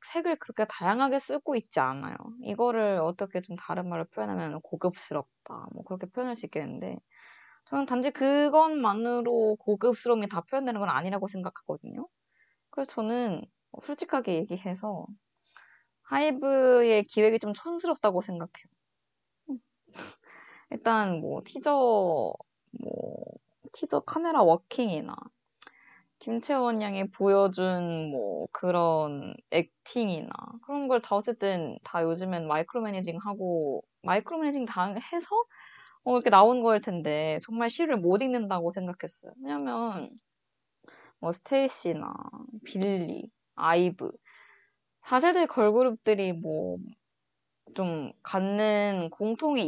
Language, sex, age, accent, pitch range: Korean, female, 20-39, native, 180-260 Hz